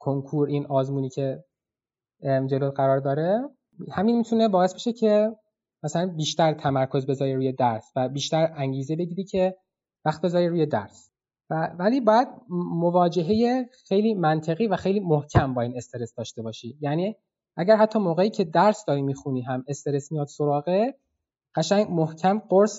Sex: male